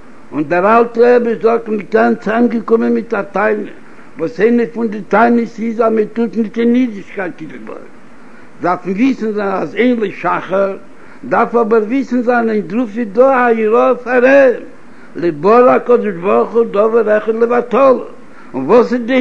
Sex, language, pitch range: male, Hebrew, 210-250 Hz